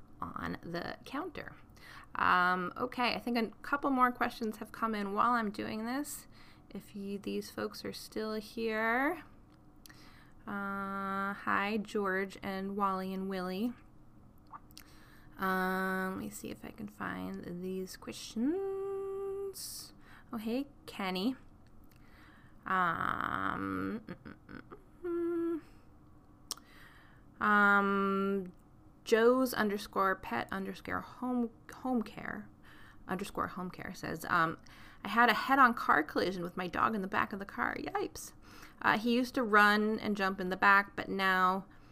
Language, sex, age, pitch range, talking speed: English, female, 20-39, 185-240 Hz, 125 wpm